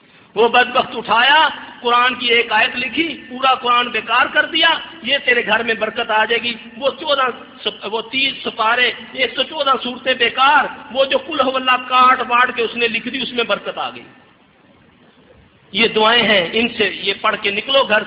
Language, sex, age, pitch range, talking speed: Urdu, male, 50-69, 200-255 Hz, 190 wpm